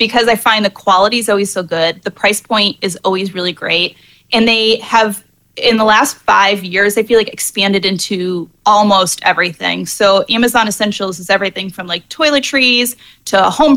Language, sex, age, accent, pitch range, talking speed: English, female, 20-39, American, 185-225 Hz, 180 wpm